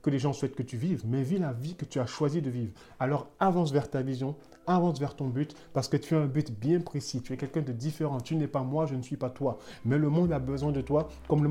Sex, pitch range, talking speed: male, 135-160 Hz, 295 wpm